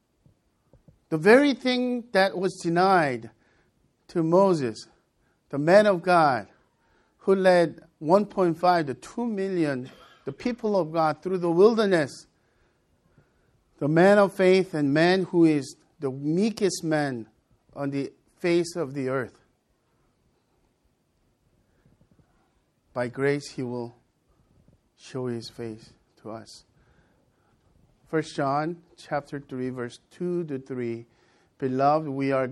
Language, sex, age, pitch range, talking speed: English, male, 50-69, 130-175 Hz, 115 wpm